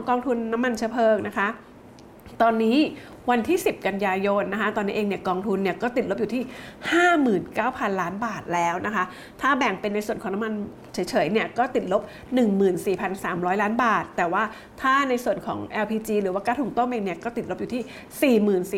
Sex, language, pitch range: female, English, 190-235 Hz